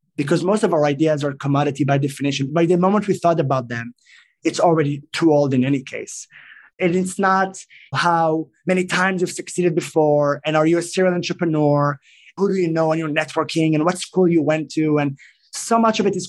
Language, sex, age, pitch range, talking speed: English, male, 20-39, 150-185 Hz, 210 wpm